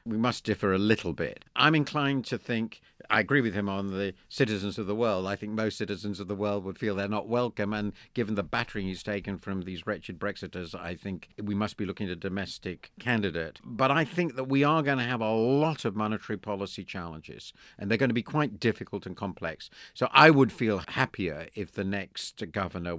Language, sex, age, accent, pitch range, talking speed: English, male, 50-69, British, 95-115 Hz, 220 wpm